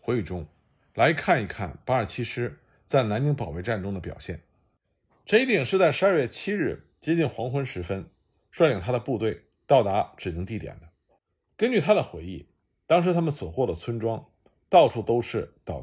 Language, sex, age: Chinese, male, 50-69